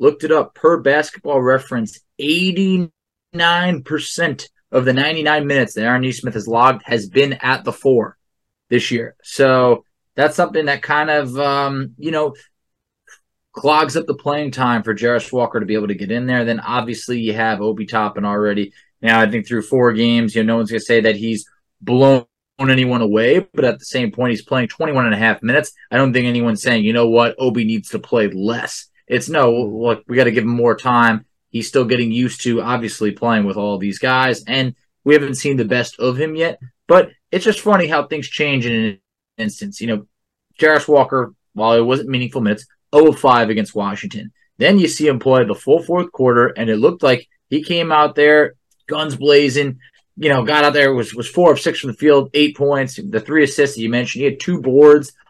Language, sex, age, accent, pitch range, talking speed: English, male, 20-39, American, 115-150 Hz, 210 wpm